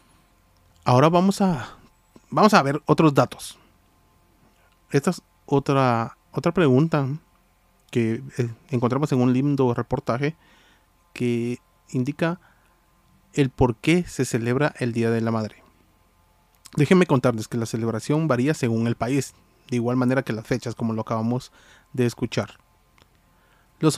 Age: 30-49